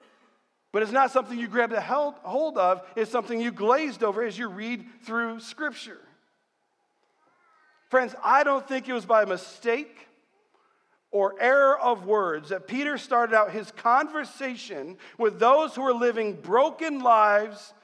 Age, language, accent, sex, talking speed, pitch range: 50-69, English, American, male, 150 wpm, 235-295 Hz